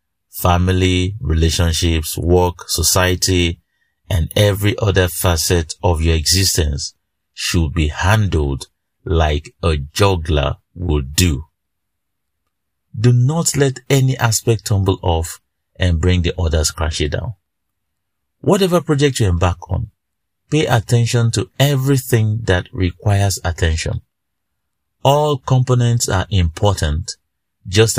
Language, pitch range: English, 85-115 Hz